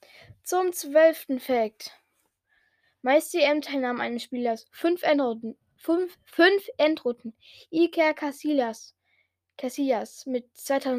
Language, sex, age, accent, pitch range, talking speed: German, female, 10-29, German, 230-300 Hz, 95 wpm